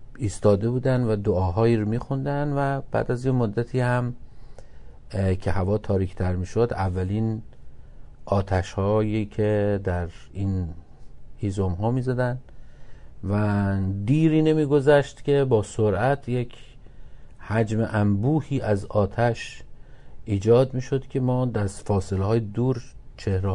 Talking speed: 115 wpm